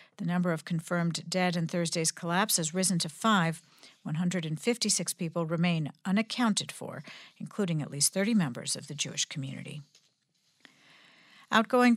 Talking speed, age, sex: 135 wpm, 60-79, female